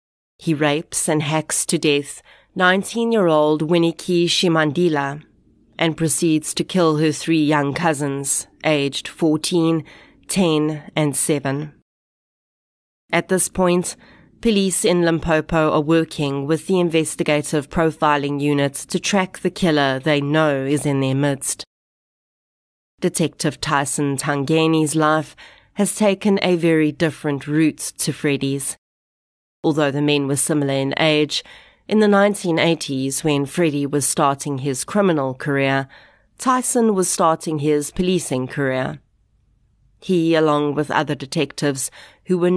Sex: female